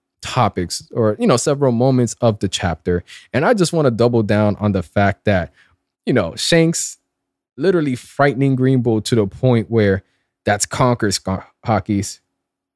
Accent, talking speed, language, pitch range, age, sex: American, 160 wpm, English, 100-140 Hz, 20-39, male